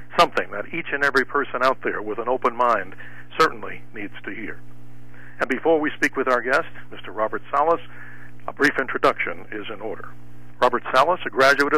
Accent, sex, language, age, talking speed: American, male, English, 60-79, 185 wpm